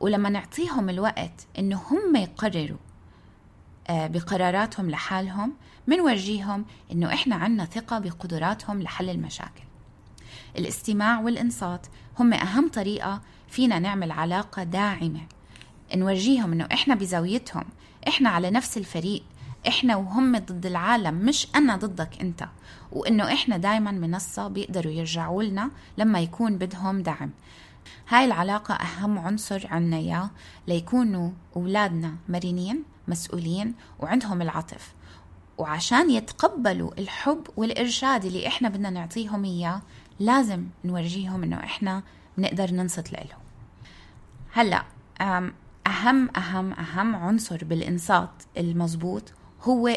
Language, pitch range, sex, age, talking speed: Arabic, 175-230 Hz, female, 20-39, 105 wpm